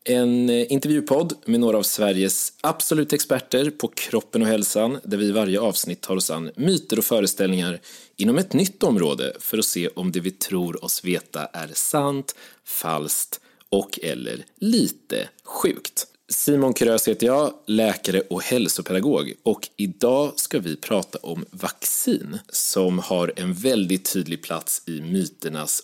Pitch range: 95-145 Hz